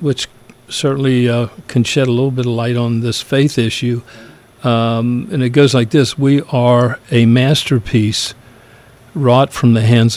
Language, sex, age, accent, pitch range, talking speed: English, male, 50-69, American, 120-140 Hz, 165 wpm